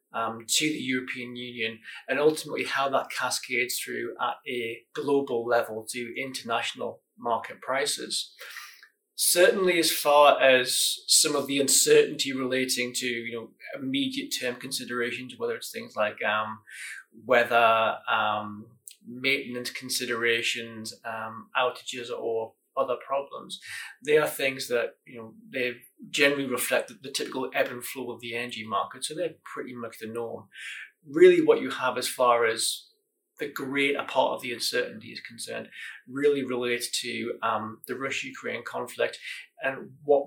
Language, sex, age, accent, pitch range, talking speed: English, male, 20-39, British, 120-150 Hz, 145 wpm